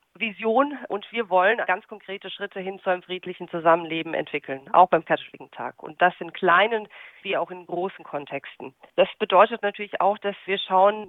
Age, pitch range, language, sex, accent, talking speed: 40-59, 175-210 Hz, German, female, German, 175 wpm